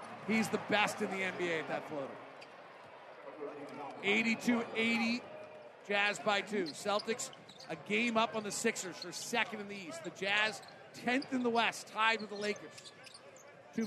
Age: 40-59